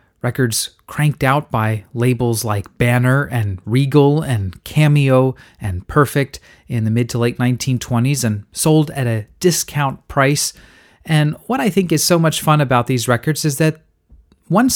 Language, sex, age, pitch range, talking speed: English, male, 30-49, 115-150 Hz, 150 wpm